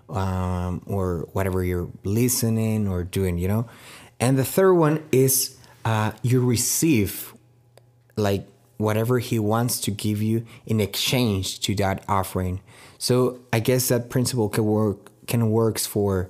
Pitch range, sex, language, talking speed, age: 105-125 Hz, male, English, 145 wpm, 30-49